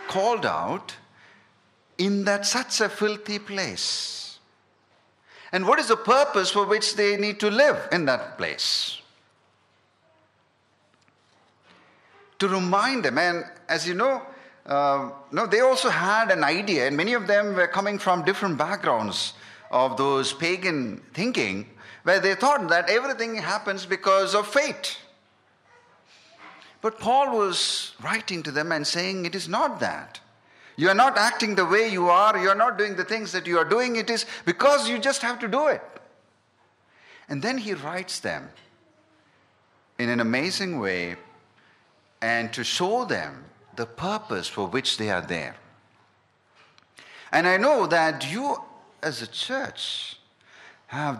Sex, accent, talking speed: male, Indian, 145 wpm